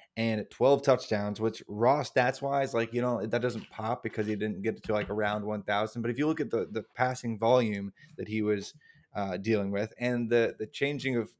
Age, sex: 20-39, male